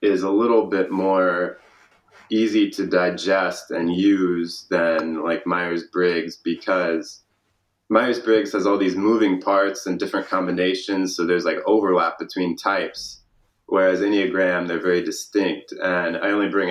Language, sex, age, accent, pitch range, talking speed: English, male, 20-39, American, 85-100 Hz, 135 wpm